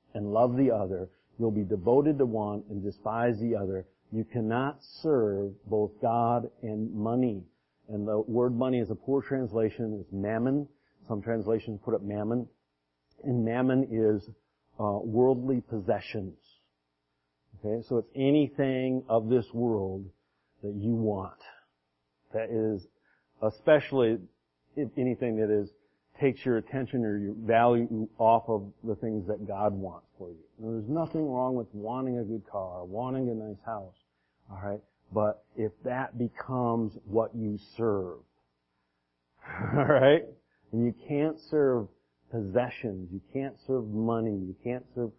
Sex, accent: male, American